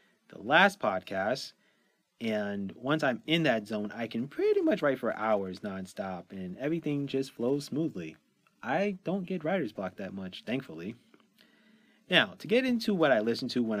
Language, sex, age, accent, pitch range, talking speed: English, male, 30-49, American, 110-160 Hz, 170 wpm